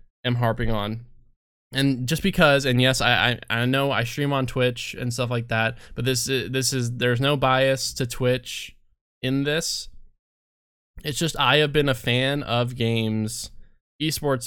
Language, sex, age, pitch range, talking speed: English, male, 20-39, 115-140 Hz, 170 wpm